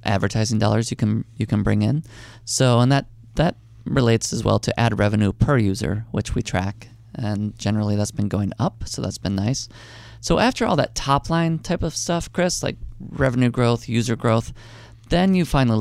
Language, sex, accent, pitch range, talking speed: English, male, American, 110-125 Hz, 195 wpm